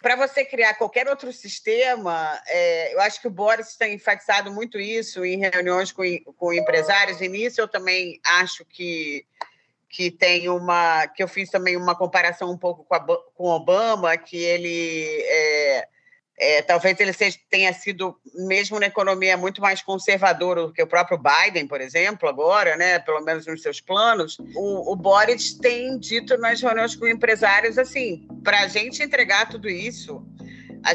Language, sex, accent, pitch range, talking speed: Portuguese, female, Brazilian, 180-235 Hz, 170 wpm